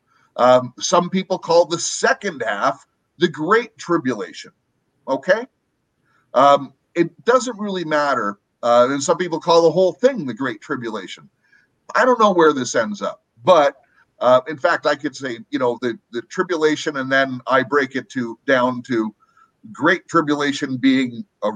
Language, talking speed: English, 160 wpm